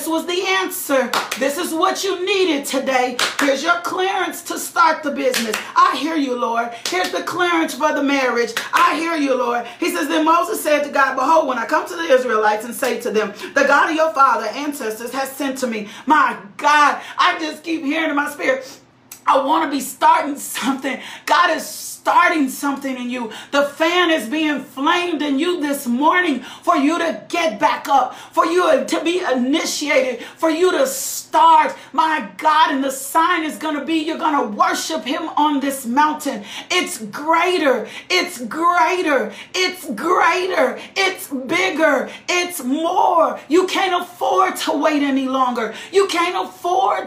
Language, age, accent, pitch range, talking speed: English, 40-59, American, 270-345 Hz, 175 wpm